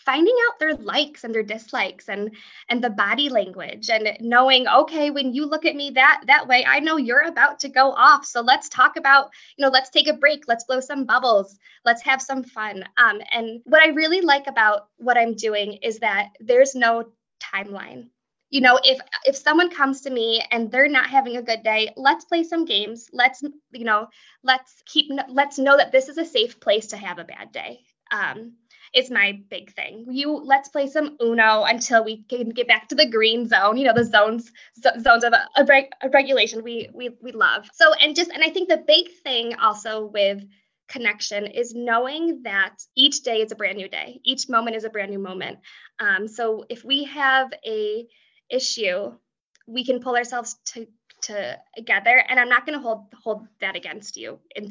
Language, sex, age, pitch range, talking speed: English, female, 10-29, 220-285 Hz, 205 wpm